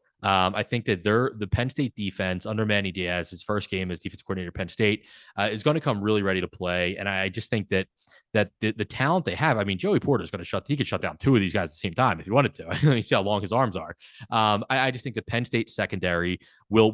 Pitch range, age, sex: 90-110 Hz, 20-39, male